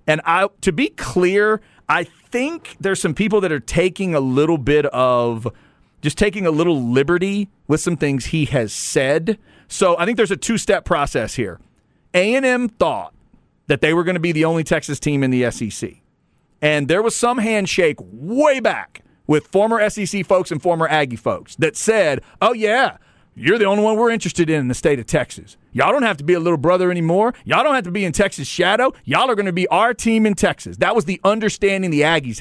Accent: American